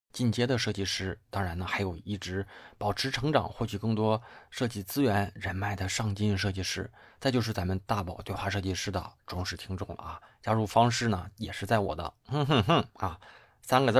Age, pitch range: 20-39, 95-110 Hz